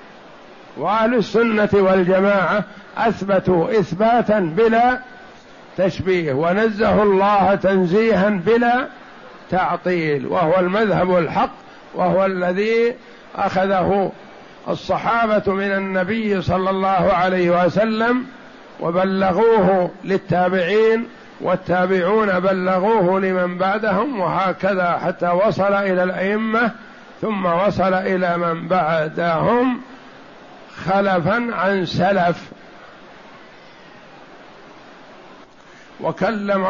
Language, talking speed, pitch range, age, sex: Arabic, 75 wpm, 180-210 Hz, 60-79, male